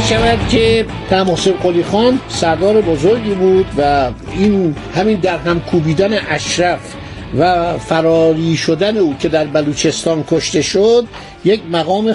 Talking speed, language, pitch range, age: 130 wpm, Persian, 160-210 Hz, 60-79